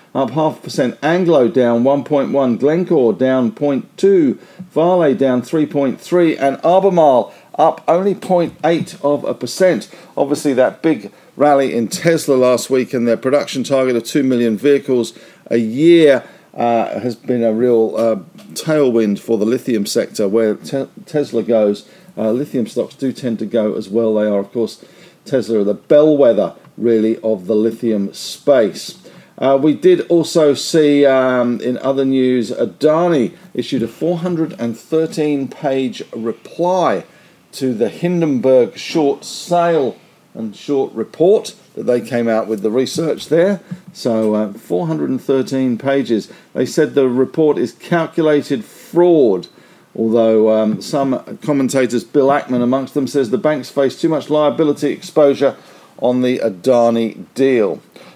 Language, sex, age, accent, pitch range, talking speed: English, male, 50-69, British, 120-155 Hz, 140 wpm